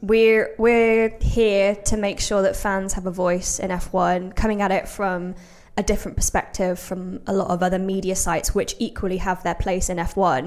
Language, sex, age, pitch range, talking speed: English, female, 20-39, 180-205 Hz, 195 wpm